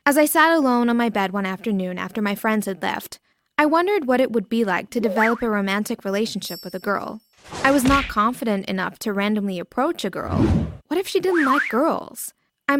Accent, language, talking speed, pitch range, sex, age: American, English, 215 wpm, 200-265 Hz, female, 20-39